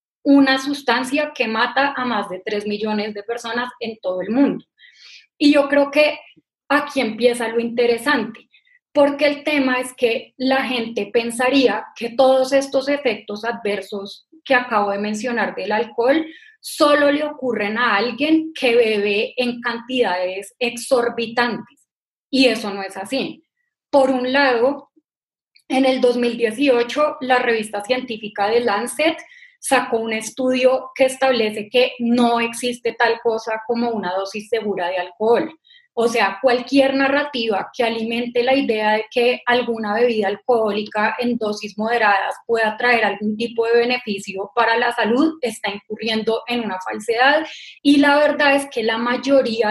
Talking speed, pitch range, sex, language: 145 wpm, 220-270 Hz, female, Spanish